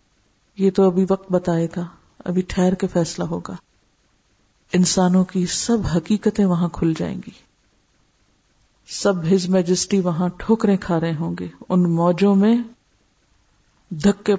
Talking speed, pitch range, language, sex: 135 wpm, 185-240 Hz, Urdu, female